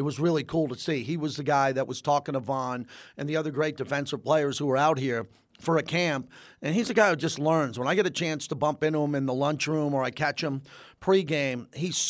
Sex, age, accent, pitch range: male, 40-59, American, 155-215 Hz